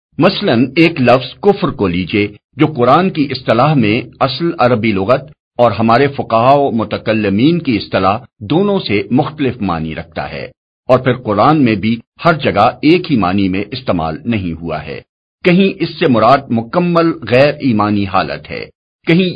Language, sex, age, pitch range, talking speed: Urdu, male, 50-69, 100-150 Hz, 160 wpm